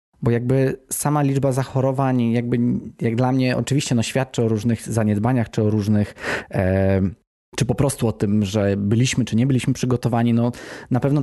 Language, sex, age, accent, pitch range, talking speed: Polish, male, 20-39, native, 105-125 Hz, 175 wpm